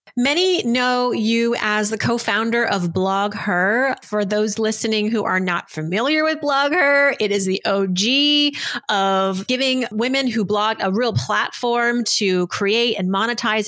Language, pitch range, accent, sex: English, 190-240 Hz, American, female